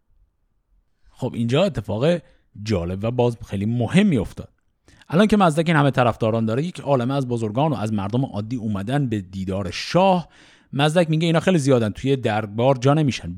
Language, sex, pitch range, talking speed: Persian, male, 115-175 Hz, 165 wpm